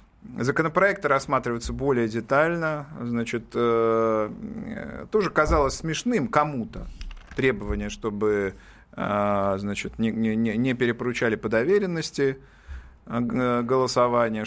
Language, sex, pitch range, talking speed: Russian, male, 115-150 Hz, 70 wpm